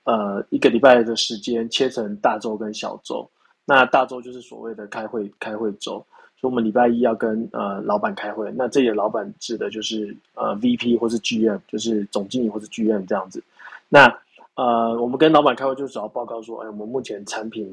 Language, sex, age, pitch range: Chinese, male, 20-39, 110-130 Hz